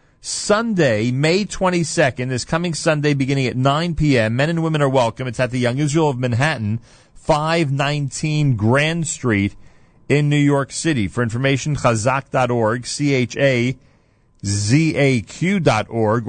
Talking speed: 120 wpm